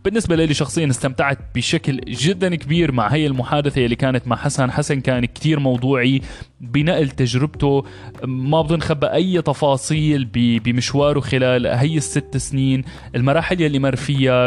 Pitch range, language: 120-150 Hz, Arabic